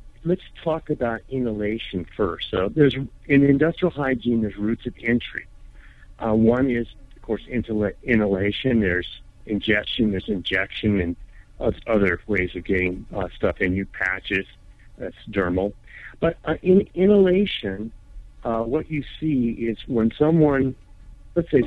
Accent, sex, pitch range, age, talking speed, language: American, male, 95-130 Hz, 60-79, 135 wpm, English